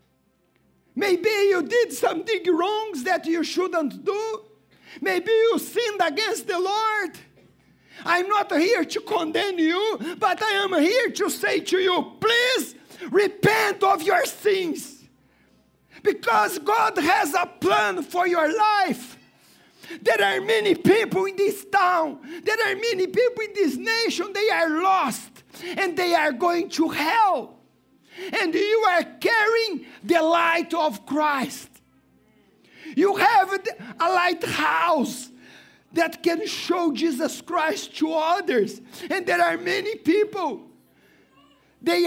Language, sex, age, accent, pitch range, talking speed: English, male, 50-69, Brazilian, 310-400 Hz, 130 wpm